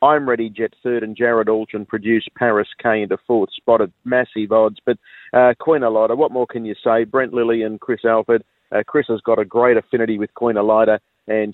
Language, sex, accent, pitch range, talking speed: English, male, Australian, 105-120 Hz, 210 wpm